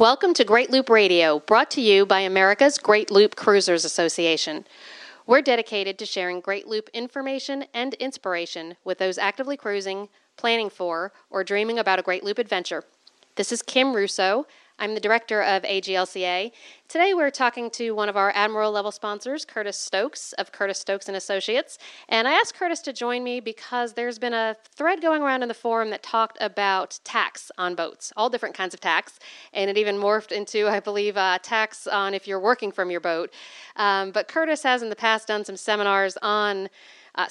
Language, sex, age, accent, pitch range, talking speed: English, female, 40-59, American, 195-235 Hz, 185 wpm